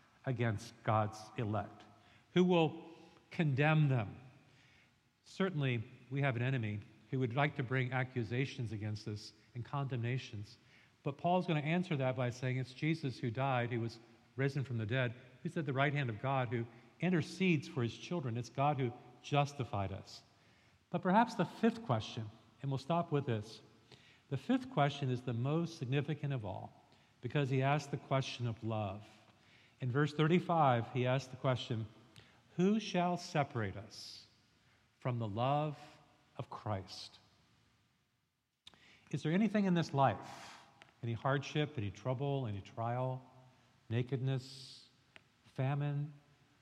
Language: English